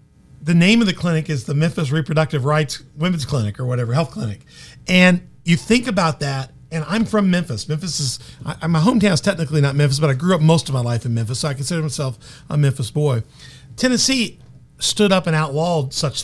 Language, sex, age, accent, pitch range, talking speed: English, male, 50-69, American, 140-180 Hz, 205 wpm